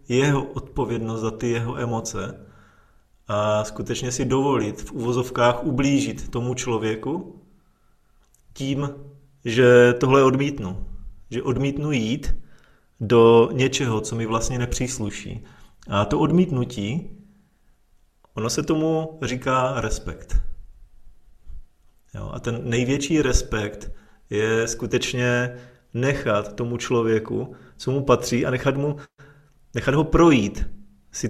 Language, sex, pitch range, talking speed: Czech, male, 110-130 Hz, 105 wpm